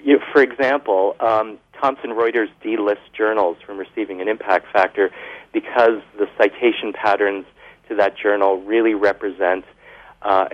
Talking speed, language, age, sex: 125 wpm, English, 40-59, male